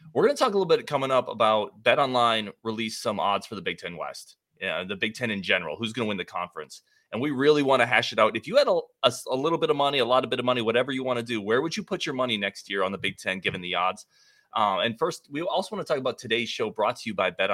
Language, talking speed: English, 315 wpm